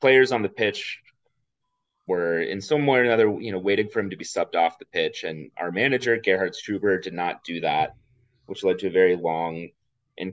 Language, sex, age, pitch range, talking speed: English, male, 30-49, 85-115 Hz, 215 wpm